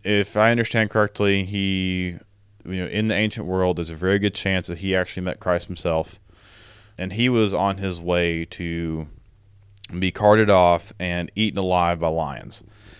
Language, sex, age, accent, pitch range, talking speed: English, male, 30-49, American, 95-115 Hz, 170 wpm